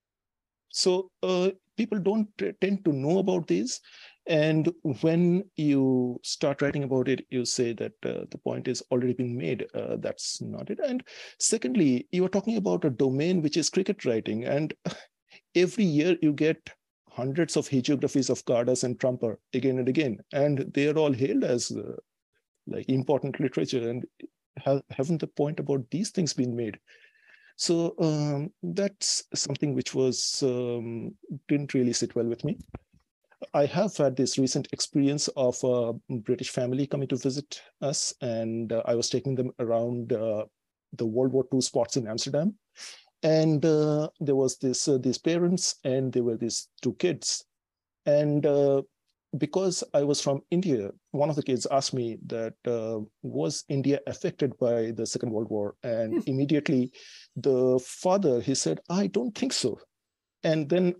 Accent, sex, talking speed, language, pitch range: Indian, male, 165 wpm, English, 125-165 Hz